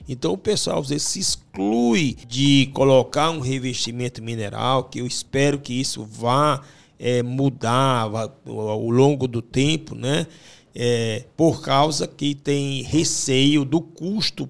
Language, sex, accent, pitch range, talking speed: English, male, Brazilian, 120-150 Hz, 120 wpm